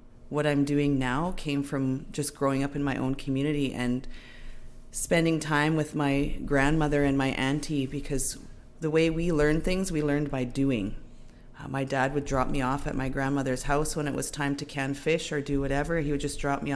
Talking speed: 210 wpm